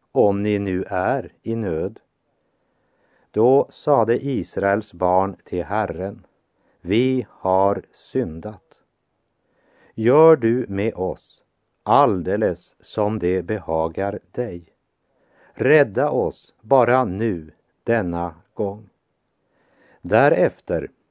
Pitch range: 95-115 Hz